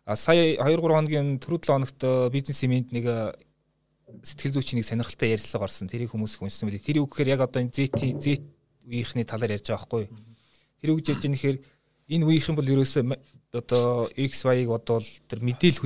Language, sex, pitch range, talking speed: Russian, male, 115-140 Hz, 130 wpm